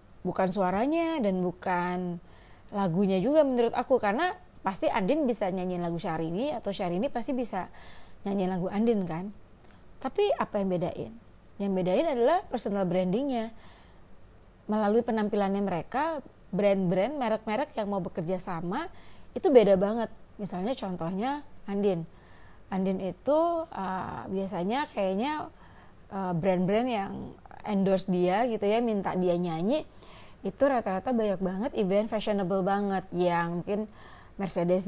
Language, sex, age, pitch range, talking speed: Indonesian, female, 30-49, 180-230 Hz, 125 wpm